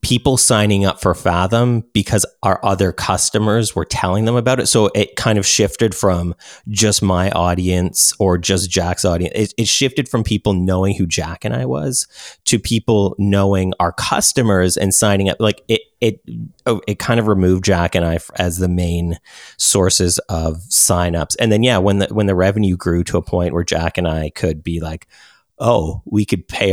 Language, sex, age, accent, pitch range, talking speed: English, male, 30-49, American, 85-100 Hz, 190 wpm